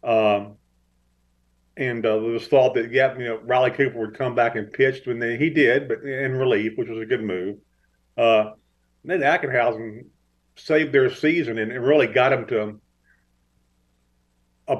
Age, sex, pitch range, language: 50-69, male, 105-140 Hz, English